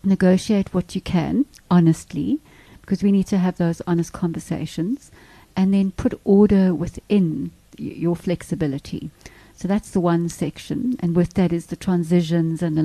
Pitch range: 170-200 Hz